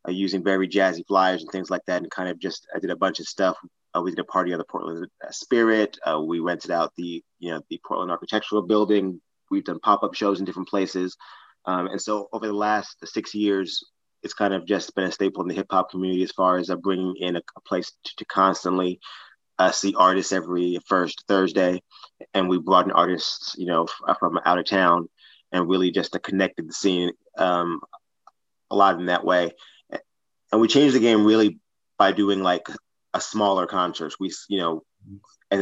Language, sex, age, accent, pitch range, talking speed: English, male, 20-39, American, 90-100 Hz, 210 wpm